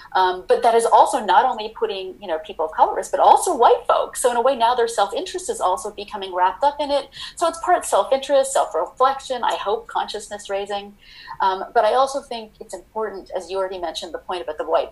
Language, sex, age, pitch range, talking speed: English, female, 30-49, 180-245 Hz, 225 wpm